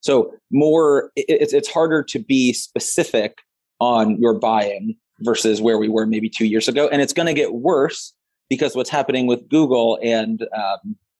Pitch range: 110-135 Hz